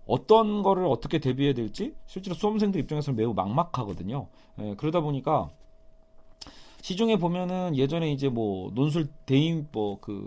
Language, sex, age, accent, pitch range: Korean, male, 40-59, native, 120-165 Hz